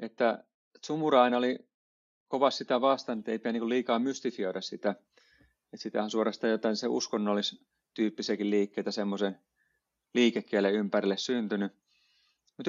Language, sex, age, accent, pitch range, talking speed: Finnish, male, 30-49, native, 105-125 Hz, 120 wpm